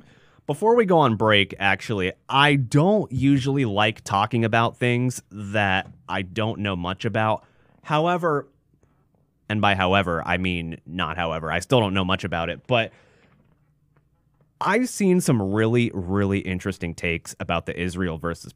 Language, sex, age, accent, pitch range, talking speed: English, male, 30-49, American, 100-135 Hz, 150 wpm